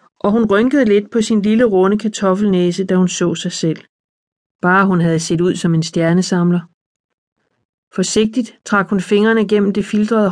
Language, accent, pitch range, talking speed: Danish, native, 180-210 Hz, 170 wpm